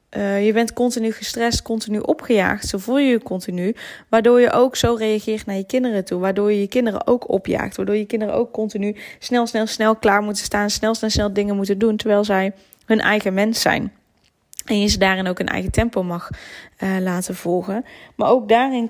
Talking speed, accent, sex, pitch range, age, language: 205 wpm, Dutch, female, 200-235 Hz, 10-29, Dutch